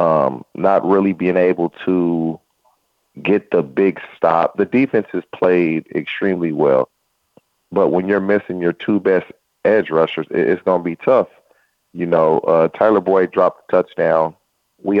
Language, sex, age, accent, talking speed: English, male, 30-49, American, 155 wpm